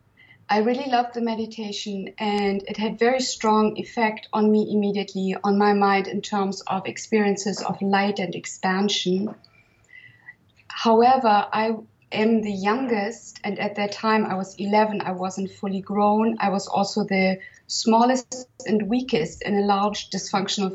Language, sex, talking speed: English, female, 150 wpm